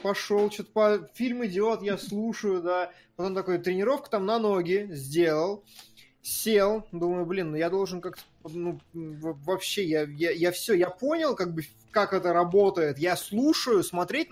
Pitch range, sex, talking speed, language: 160-225 Hz, male, 155 wpm, Russian